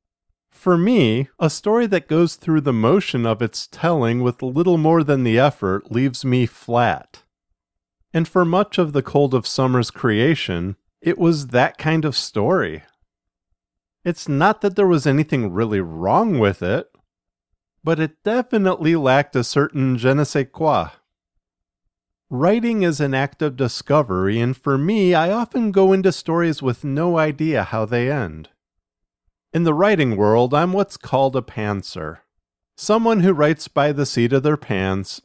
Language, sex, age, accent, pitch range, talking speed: English, male, 40-59, American, 115-170 Hz, 160 wpm